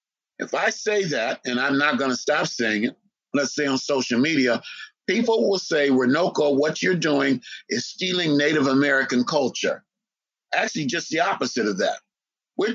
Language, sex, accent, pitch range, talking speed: English, male, American, 130-205 Hz, 165 wpm